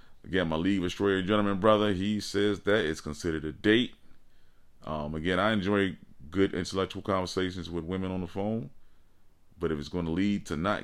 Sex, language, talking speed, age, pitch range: male, English, 175 wpm, 30-49, 85-110 Hz